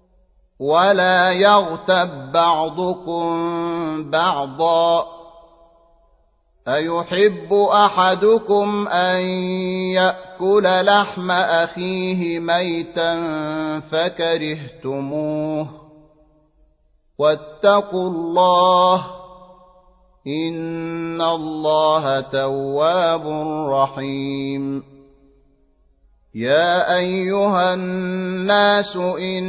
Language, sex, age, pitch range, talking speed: Arabic, male, 30-49, 160-185 Hz, 45 wpm